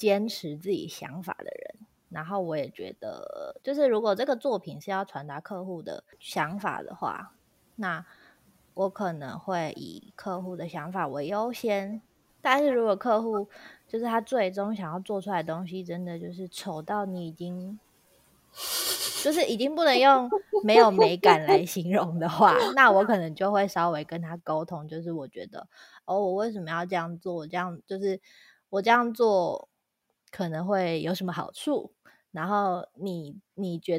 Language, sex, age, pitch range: Chinese, female, 20-39, 165-210 Hz